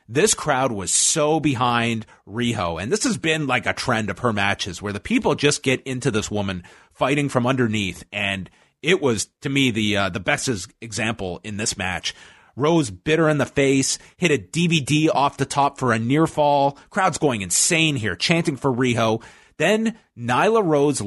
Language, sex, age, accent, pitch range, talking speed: English, male, 30-49, American, 115-155 Hz, 185 wpm